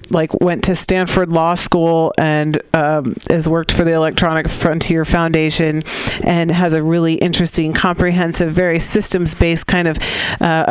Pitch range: 155-180 Hz